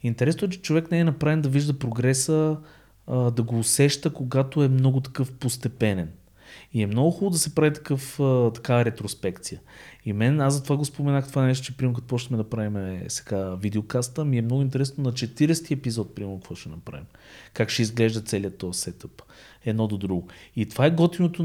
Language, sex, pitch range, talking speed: Bulgarian, male, 110-140 Hz, 195 wpm